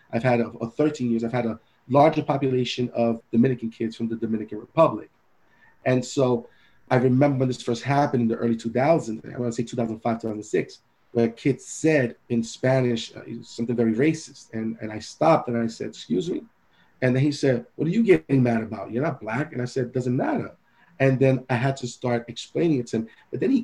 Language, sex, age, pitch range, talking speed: English, male, 40-59, 115-135 Hz, 220 wpm